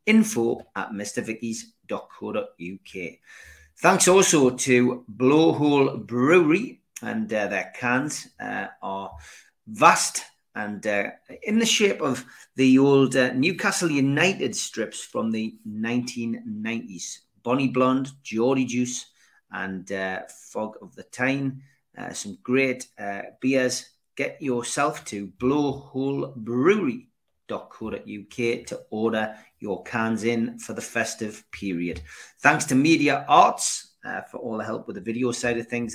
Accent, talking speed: British, 125 wpm